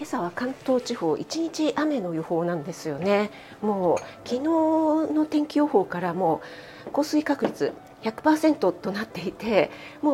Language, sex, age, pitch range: Japanese, female, 40-59, 175-275 Hz